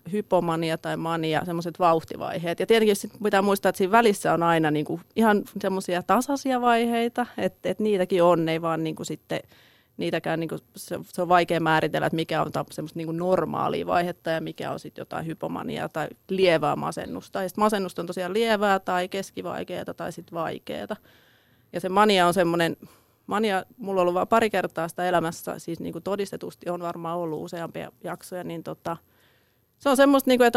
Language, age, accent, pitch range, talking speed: Finnish, 30-49, native, 170-210 Hz, 175 wpm